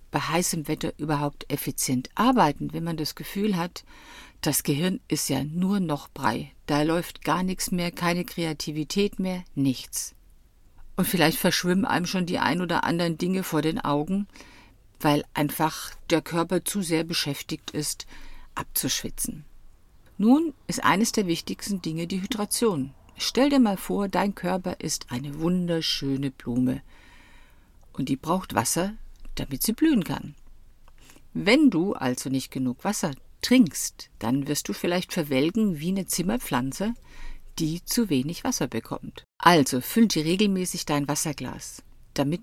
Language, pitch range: German, 140-190 Hz